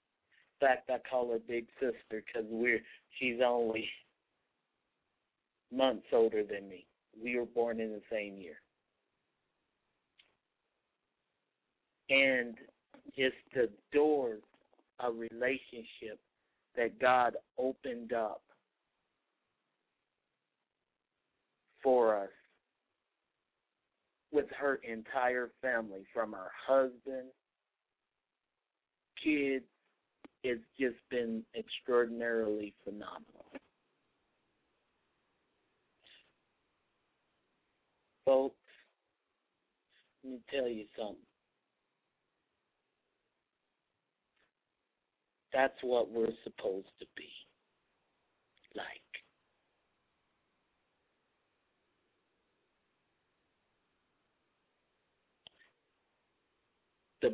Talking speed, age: 65 wpm, 50-69